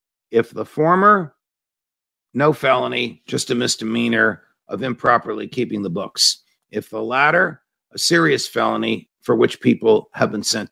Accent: American